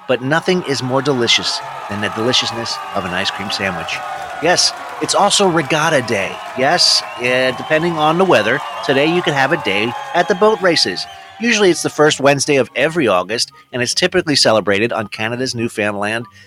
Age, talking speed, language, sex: 30-49, 175 wpm, English, male